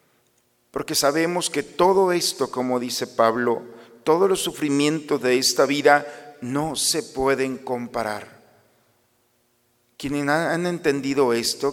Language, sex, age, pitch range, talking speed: Spanish, male, 50-69, 120-155 Hz, 115 wpm